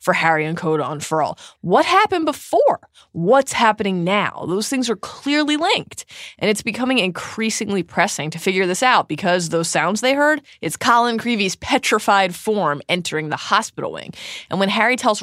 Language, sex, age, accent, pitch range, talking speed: English, female, 20-39, American, 155-225 Hz, 175 wpm